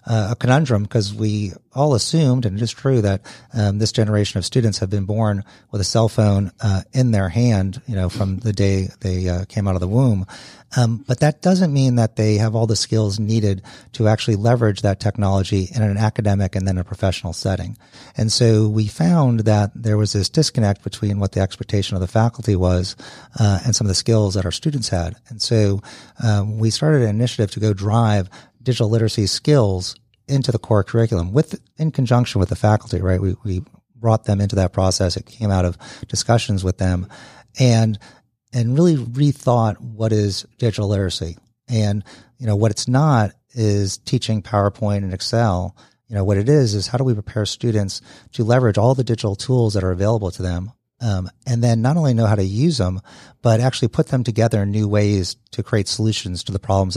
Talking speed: 205 wpm